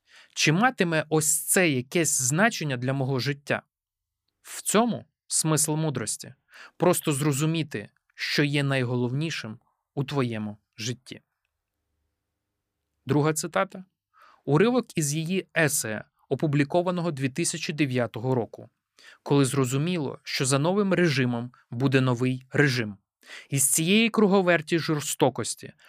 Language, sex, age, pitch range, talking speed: Ukrainian, male, 20-39, 125-160 Hz, 100 wpm